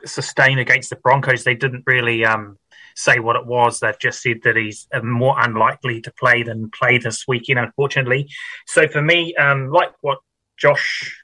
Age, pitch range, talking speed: 30-49, 125-145 Hz, 175 wpm